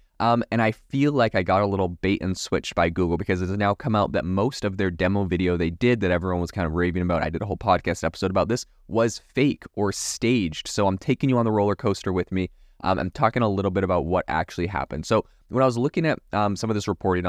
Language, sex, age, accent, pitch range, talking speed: English, male, 20-39, American, 85-110 Hz, 270 wpm